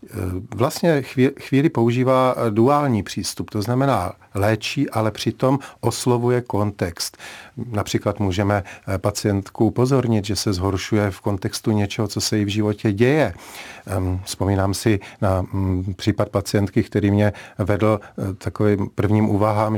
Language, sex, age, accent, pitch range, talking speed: Czech, male, 50-69, native, 100-120 Hz, 120 wpm